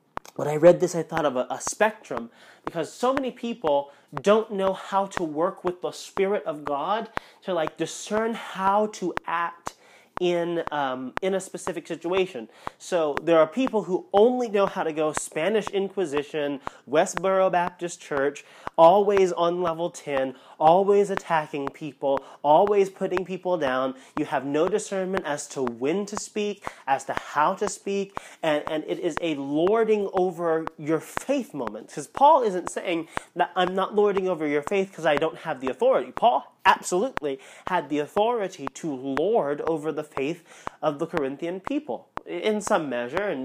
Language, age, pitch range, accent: English, 30-49, 155-200 Hz, American